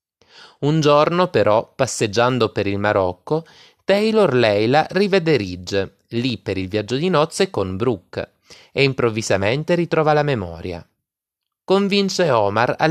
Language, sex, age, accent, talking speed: Italian, male, 30-49, native, 125 wpm